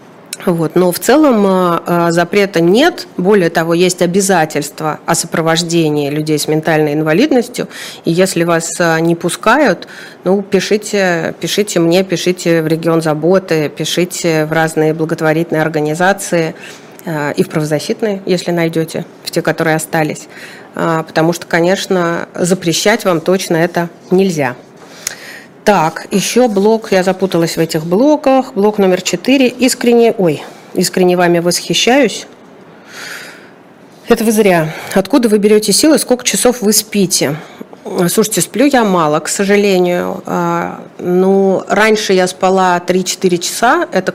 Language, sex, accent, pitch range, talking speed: Russian, female, native, 165-195 Hz, 120 wpm